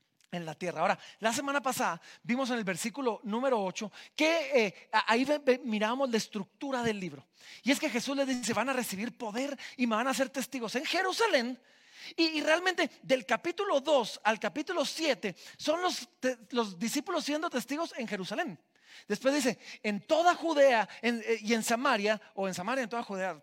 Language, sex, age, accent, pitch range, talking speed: Spanish, male, 40-59, Mexican, 200-280 Hz, 190 wpm